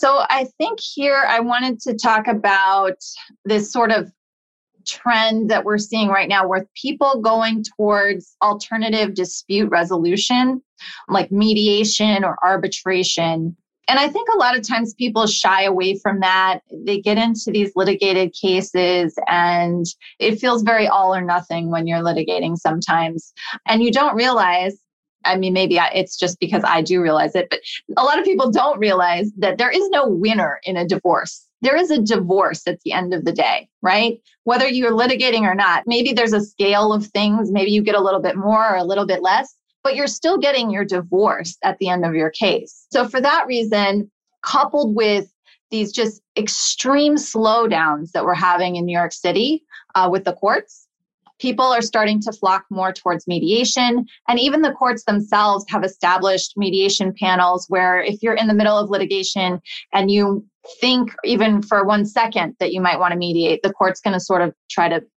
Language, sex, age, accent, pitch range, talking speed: English, female, 30-49, American, 185-230 Hz, 185 wpm